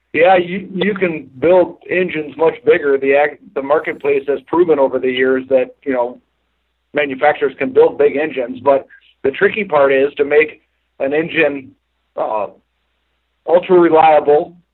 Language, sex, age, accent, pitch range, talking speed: English, male, 50-69, American, 135-170 Hz, 150 wpm